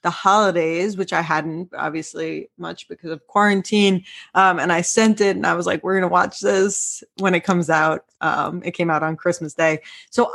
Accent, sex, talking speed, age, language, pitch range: American, female, 210 wpm, 20-39, English, 165-205 Hz